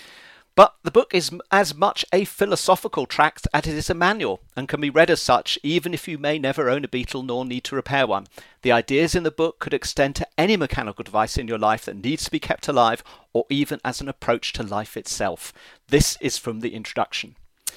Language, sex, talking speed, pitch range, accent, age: English, male, 225 wpm, 120-155 Hz, British, 40-59